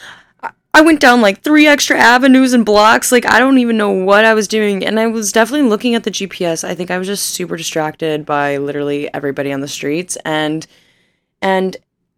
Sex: female